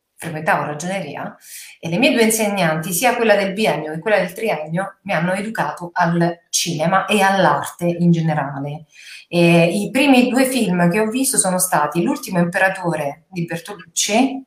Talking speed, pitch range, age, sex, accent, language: 155 wpm, 170-215 Hz, 40-59, female, native, Italian